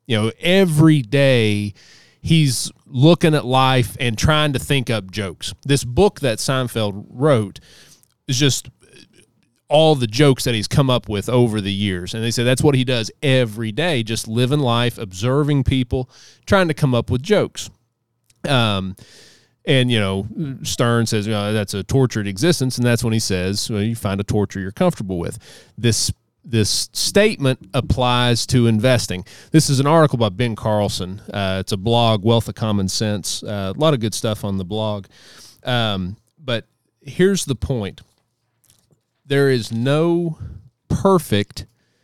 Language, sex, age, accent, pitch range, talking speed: English, male, 30-49, American, 110-140 Hz, 165 wpm